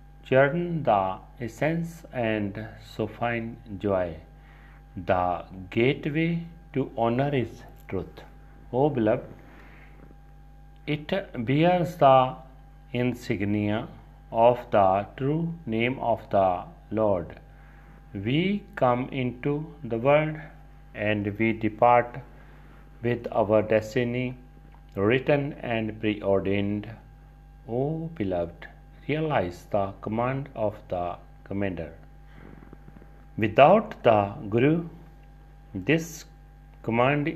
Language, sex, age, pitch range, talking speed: Punjabi, male, 40-59, 105-155 Hz, 85 wpm